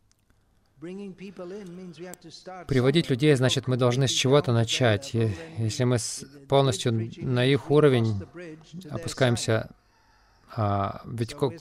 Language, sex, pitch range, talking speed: Russian, male, 115-145 Hz, 85 wpm